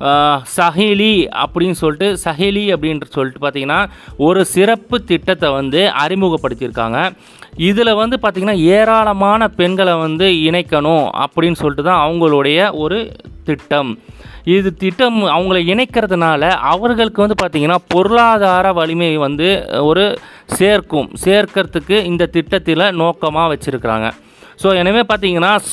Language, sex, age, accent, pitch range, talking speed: Tamil, male, 30-49, native, 155-195 Hz, 105 wpm